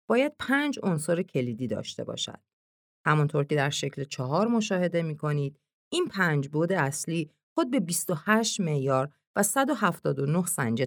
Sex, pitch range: female, 135-200 Hz